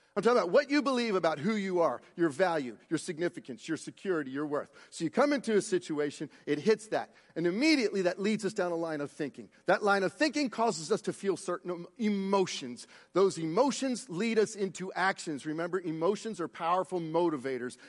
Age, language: 40-59, English